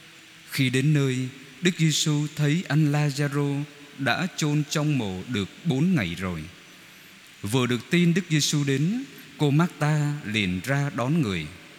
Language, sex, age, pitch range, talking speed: Vietnamese, male, 20-39, 120-170 Hz, 145 wpm